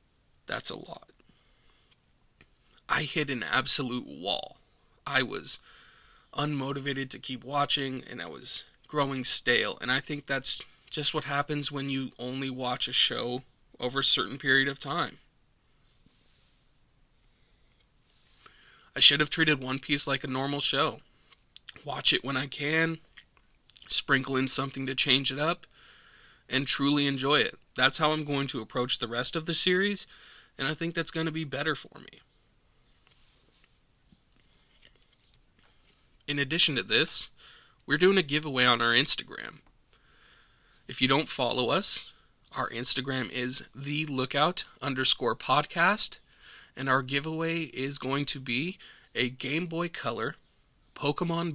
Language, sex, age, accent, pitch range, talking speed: English, male, 20-39, American, 130-155 Hz, 140 wpm